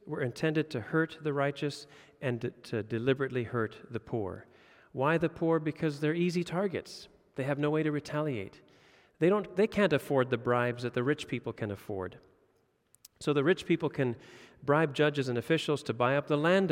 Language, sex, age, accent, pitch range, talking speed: English, male, 40-59, American, 120-165 Hz, 185 wpm